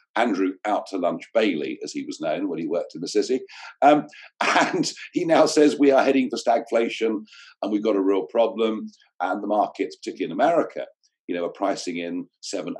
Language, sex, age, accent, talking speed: English, male, 50-69, British, 200 wpm